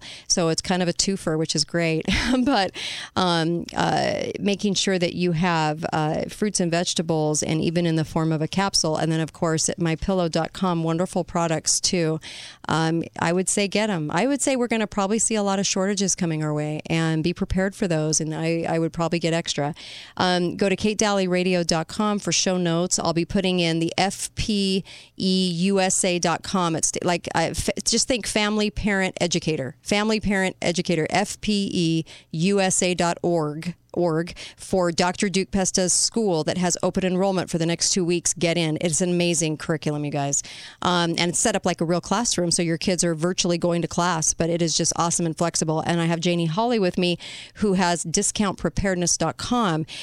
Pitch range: 165-200 Hz